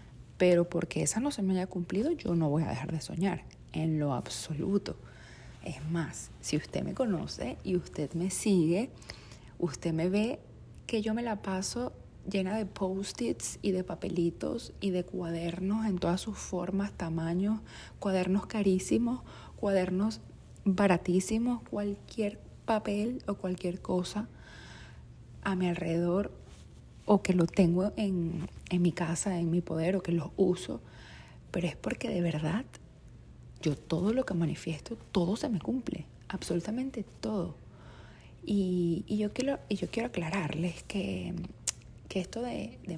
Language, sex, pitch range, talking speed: Spanish, female, 165-205 Hz, 145 wpm